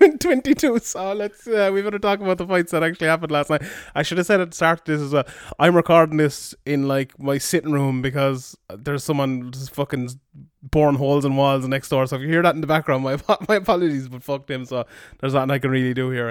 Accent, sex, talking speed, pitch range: Irish, male, 250 wpm, 140-180 Hz